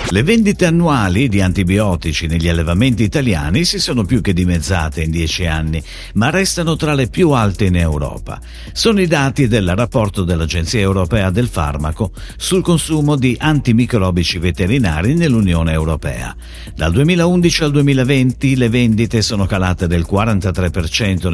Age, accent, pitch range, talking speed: 50-69, native, 85-140 Hz, 140 wpm